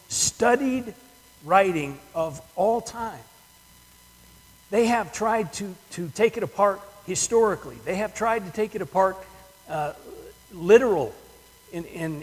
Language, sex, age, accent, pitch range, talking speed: English, male, 50-69, American, 150-220 Hz, 125 wpm